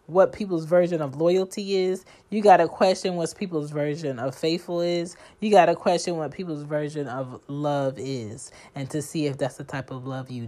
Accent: American